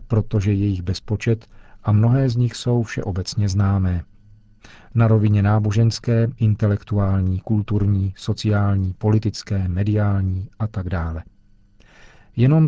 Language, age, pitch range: Czech, 40-59, 100-115 Hz